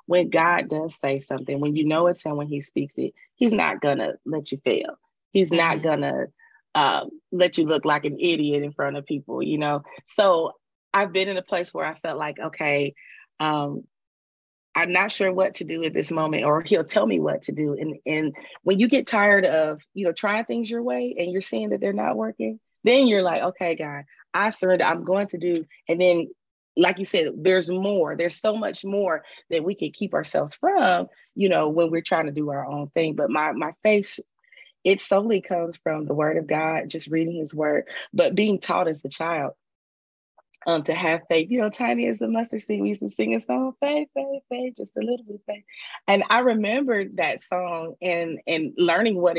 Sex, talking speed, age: female, 215 wpm, 20-39